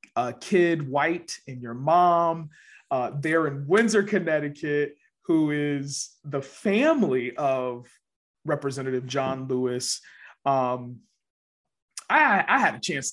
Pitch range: 130-180 Hz